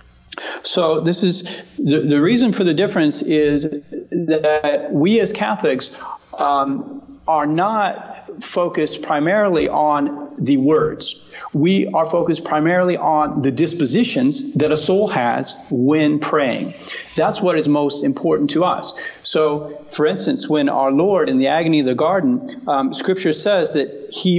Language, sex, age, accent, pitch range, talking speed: English, male, 40-59, American, 145-180 Hz, 145 wpm